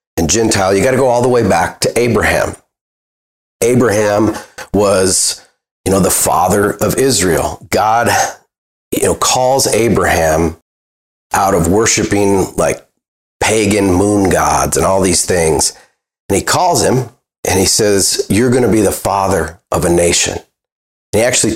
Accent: American